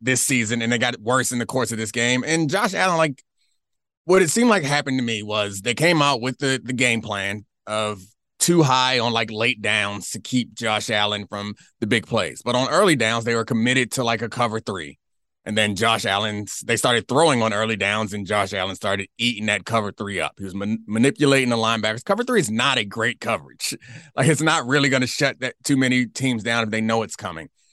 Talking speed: 230 wpm